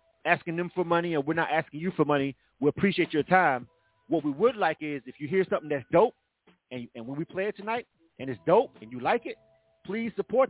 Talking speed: 240 wpm